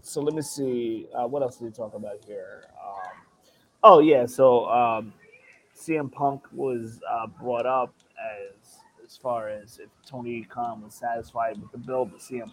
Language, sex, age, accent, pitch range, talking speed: English, male, 20-39, American, 110-140 Hz, 175 wpm